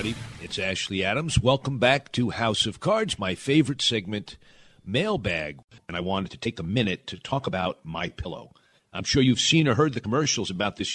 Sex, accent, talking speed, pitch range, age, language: male, American, 185 wpm, 110-145 Hz, 50-69, English